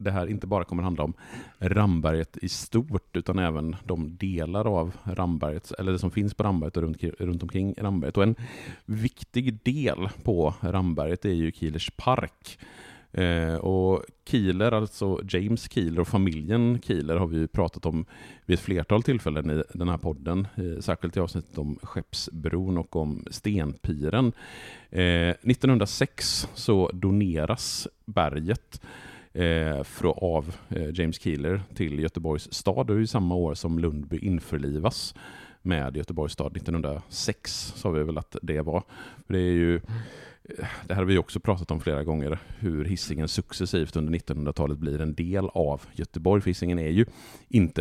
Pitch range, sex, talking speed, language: 80-105 Hz, male, 160 wpm, Swedish